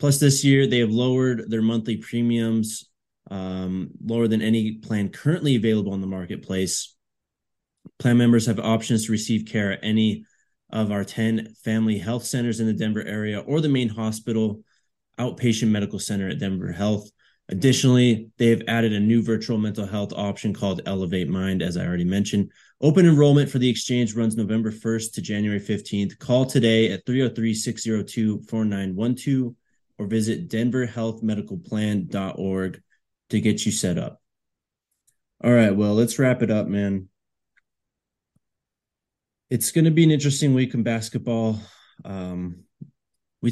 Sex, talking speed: male, 145 wpm